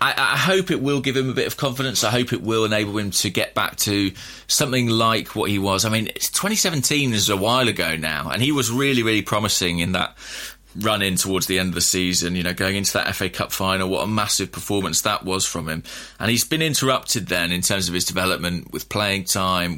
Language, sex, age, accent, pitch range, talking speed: English, male, 20-39, British, 90-120 Hz, 245 wpm